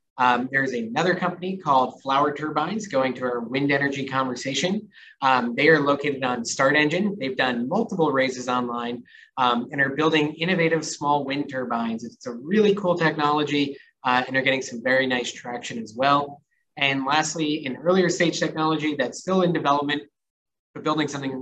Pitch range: 130-160 Hz